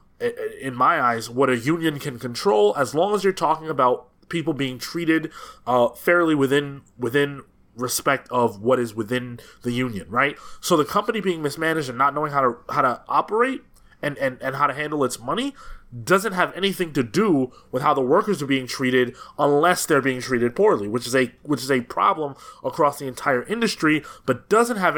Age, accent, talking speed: 20-39, American, 195 wpm